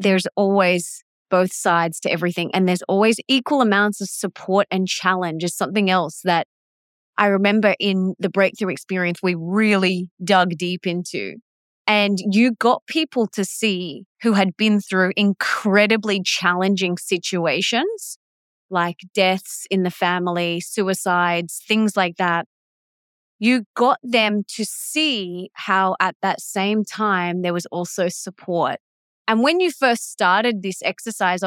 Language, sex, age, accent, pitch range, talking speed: English, female, 20-39, Australian, 180-225 Hz, 140 wpm